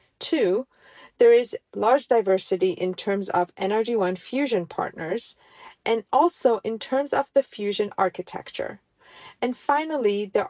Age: 40-59